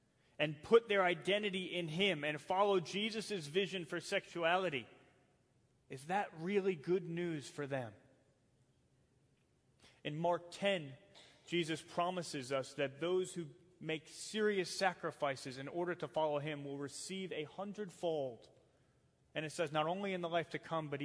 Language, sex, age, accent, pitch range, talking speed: English, male, 30-49, American, 130-155 Hz, 145 wpm